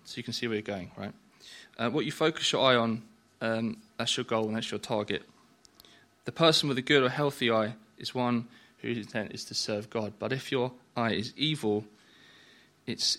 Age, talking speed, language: 20-39, 210 wpm, English